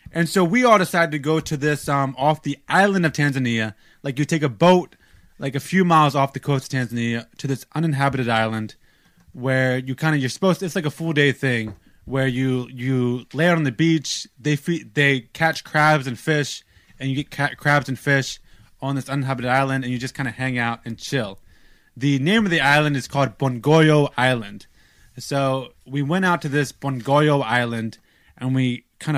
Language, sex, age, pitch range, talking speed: English, male, 20-39, 125-155 Hz, 200 wpm